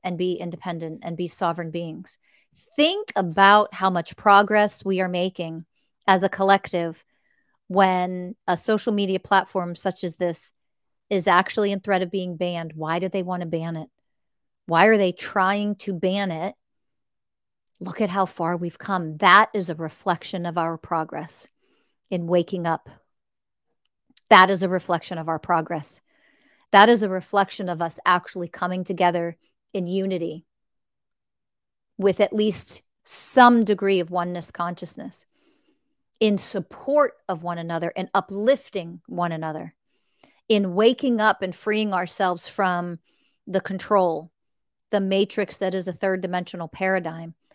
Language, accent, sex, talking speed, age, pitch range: English, American, female, 145 wpm, 40-59, 175-200 Hz